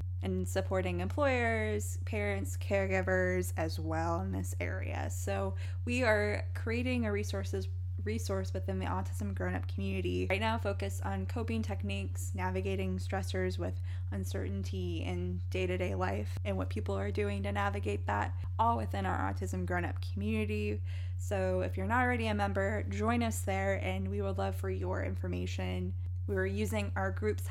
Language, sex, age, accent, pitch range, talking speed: English, female, 10-29, American, 90-100 Hz, 155 wpm